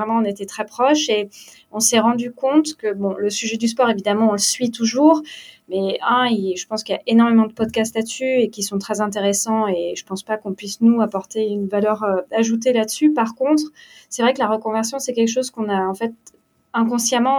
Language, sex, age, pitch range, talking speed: French, female, 20-39, 205-240 Hz, 220 wpm